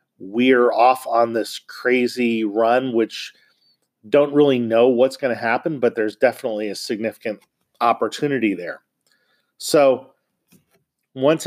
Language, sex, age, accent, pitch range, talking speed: English, male, 40-59, American, 110-130 Hz, 120 wpm